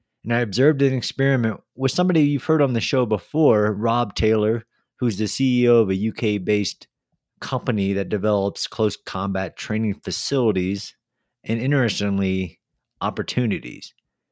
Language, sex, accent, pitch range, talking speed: English, male, American, 100-125 Hz, 135 wpm